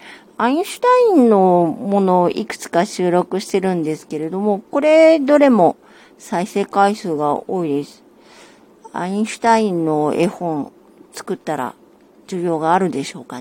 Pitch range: 175-235 Hz